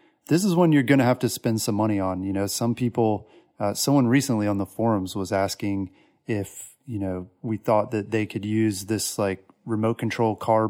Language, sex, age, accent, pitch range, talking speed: English, male, 30-49, American, 100-120 Hz, 215 wpm